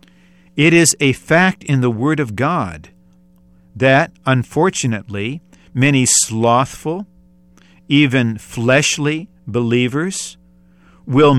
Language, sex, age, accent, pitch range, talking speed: English, male, 50-69, American, 120-180 Hz, 90 wpm